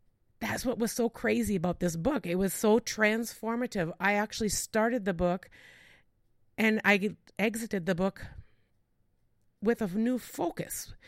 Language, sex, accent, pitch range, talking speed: English, female, American, 160-215 Hz, 140 wpm